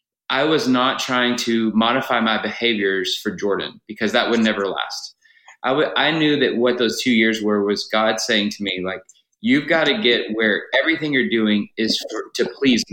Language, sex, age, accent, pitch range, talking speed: English, male, 30-49, American, 105-130 Hz, 200 wpm